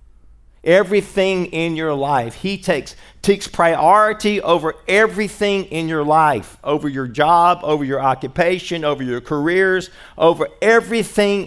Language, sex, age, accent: English, male, 50-69, American